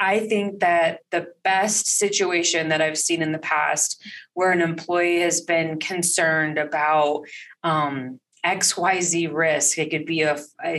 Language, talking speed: English, 140 wpm